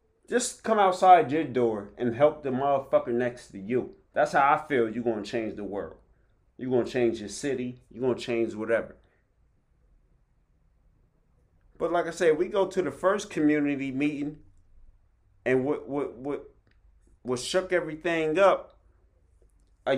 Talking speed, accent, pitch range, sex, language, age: 150 wpm, American, 95-135 Hz, male, English, 30-49